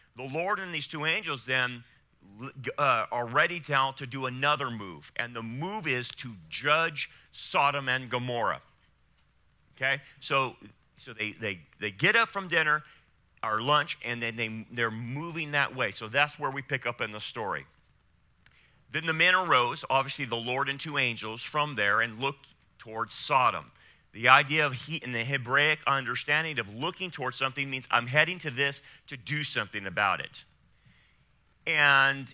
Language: English